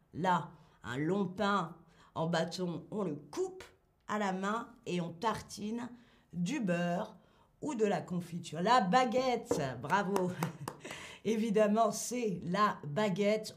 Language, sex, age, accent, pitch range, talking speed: French, female, 40-59, French, 180-235 Hz, 125 wpm